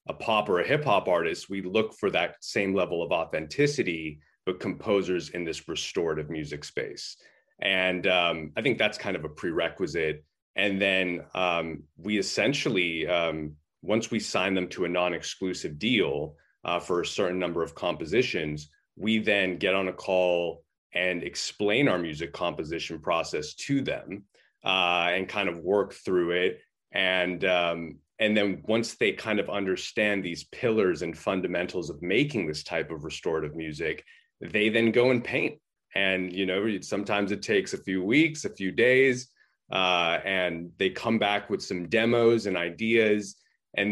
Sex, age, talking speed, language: male, 30-49, 165 wpm, English